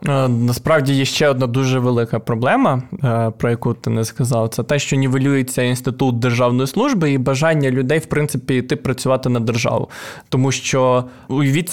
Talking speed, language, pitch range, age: 160 wpm, Ukrainian, 120-145 Hz, 20-39